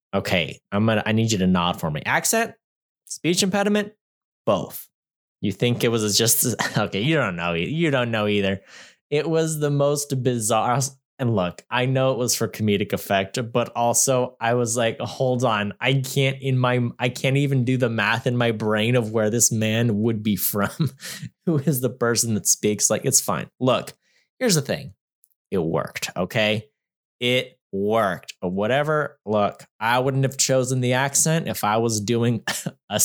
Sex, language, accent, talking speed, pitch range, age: male, English, American, 180 wpm, 105-135 Hz, 20-39